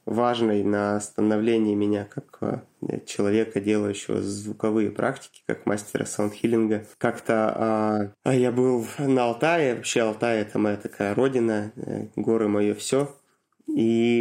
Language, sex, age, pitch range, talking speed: Russian, male, 20-39, 110-130 Hz, 125 wpm